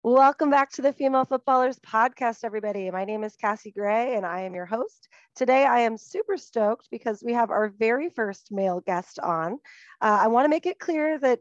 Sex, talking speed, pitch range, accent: female, 210 wpm, 195-245 Hz, American